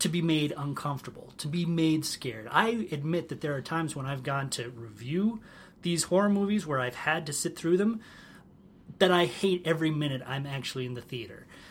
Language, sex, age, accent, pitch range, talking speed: English, male, 30-49, American, 130-175 Hz, 200 wpm